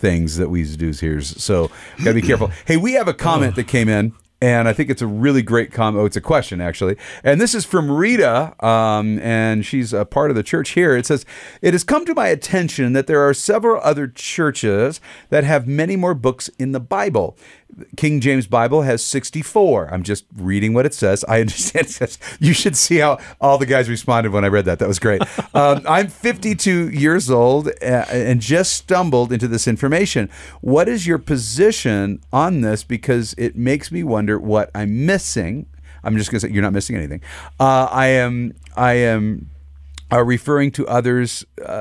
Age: 40-59